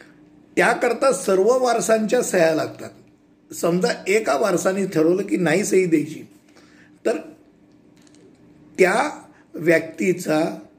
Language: Hindi